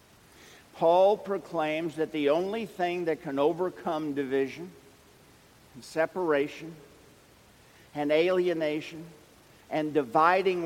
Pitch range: 140-170 Hz